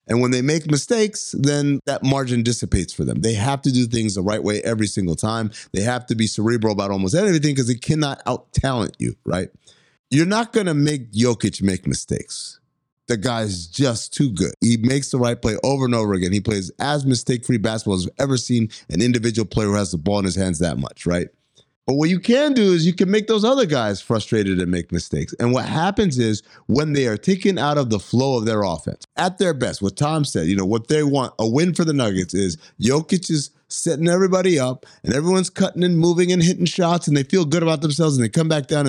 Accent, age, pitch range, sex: American, 30-49, 105-155 Hz, male